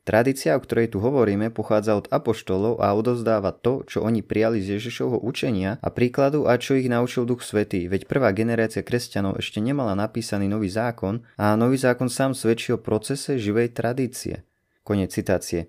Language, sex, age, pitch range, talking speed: Slovak, male, 30-49, 100-125 Hz, 170 wpm